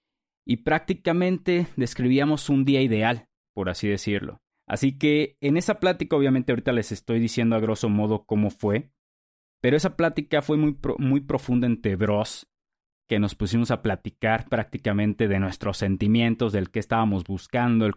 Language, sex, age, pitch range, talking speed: Spanish, male, 30-49, 105-140 Hz, 155 wpm